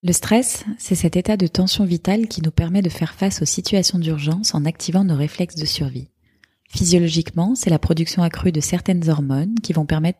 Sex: female